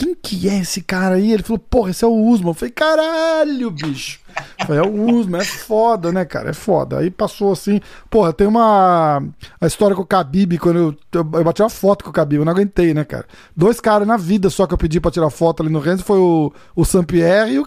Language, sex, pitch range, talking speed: Portuguese, male, 175-225 Hz, 250 wpm